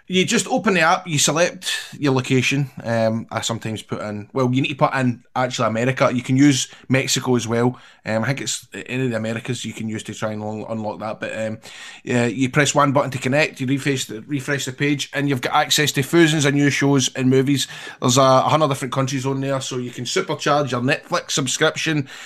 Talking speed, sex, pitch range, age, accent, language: 220 wpm, male, 115-140 Hz, 20-39, British, English